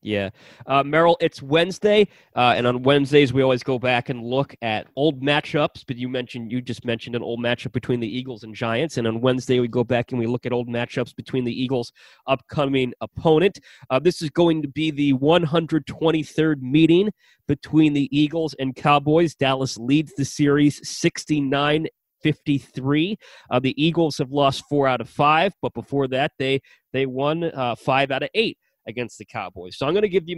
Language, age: English, 30-49